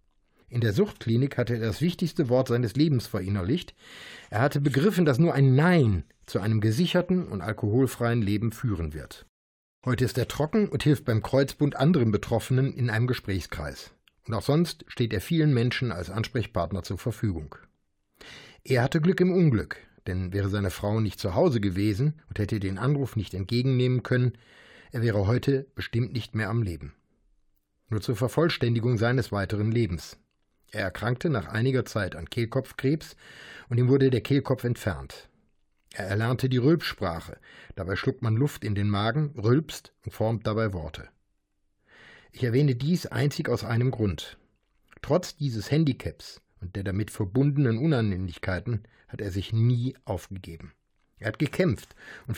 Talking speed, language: 155 wpm, German